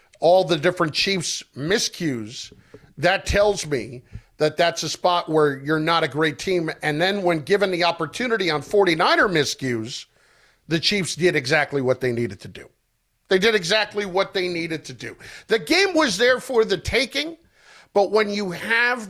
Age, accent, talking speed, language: 50-69, American, 175 wpm, English